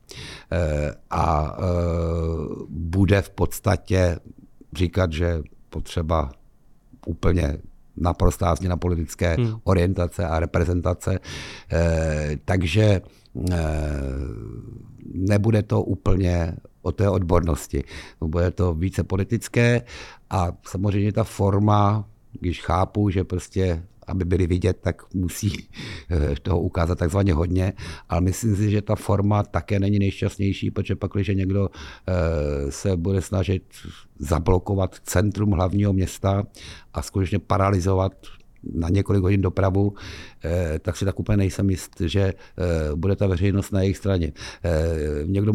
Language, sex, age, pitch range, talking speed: Czech, male, 60-79, 85-100 Hz, 110 wpm